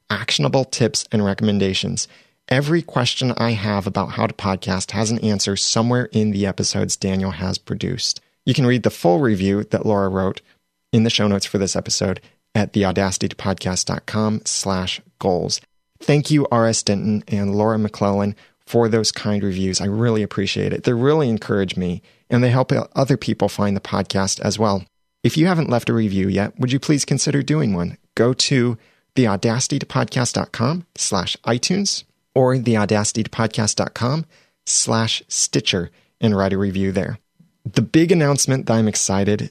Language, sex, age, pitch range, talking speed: English, male, 30-49, 100-125 Hz, 160 wpm